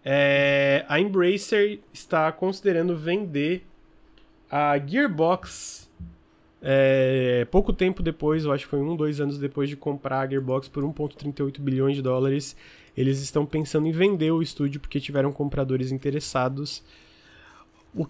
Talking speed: 135 wpm